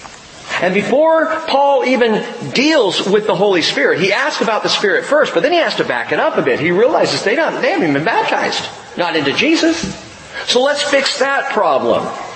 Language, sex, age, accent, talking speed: English, male, 50-69, American, 200 wpm